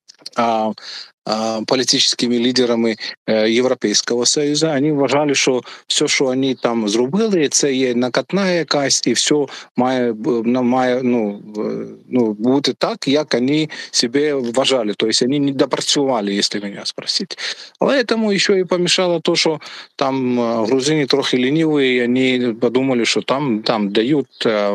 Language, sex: Ukrainian, male